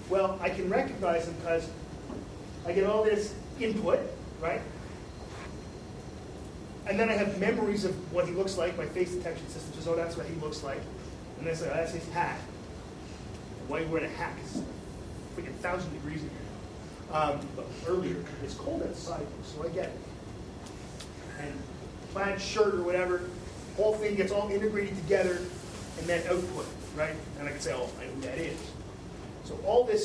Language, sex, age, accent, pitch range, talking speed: English, male, 30-49, American, 170-215 Hz, 190 wpm